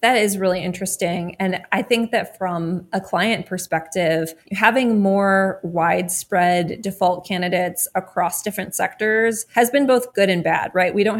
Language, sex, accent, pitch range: English, female, American, 175-200 Hz